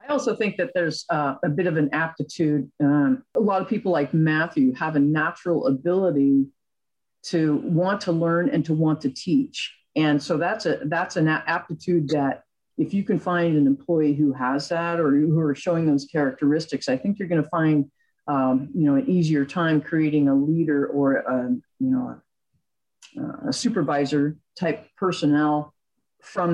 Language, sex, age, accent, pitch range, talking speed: English, female, 50-69, American, 145-185 Hz, 180 wpm